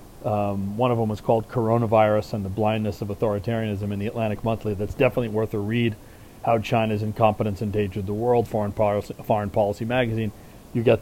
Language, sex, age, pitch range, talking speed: English, male, 40-59, 105-120 Hz, 185 wpm